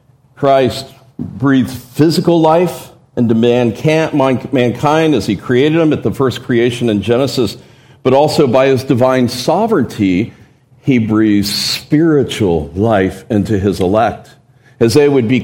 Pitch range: 110-145 Hz